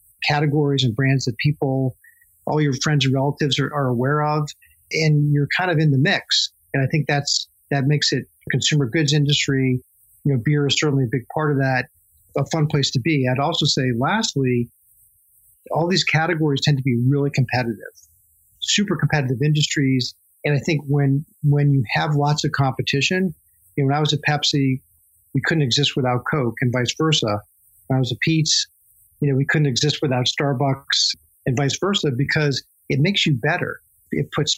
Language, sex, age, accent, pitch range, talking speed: English, male, 40-59, American, 125-150 Hz, 185 wpm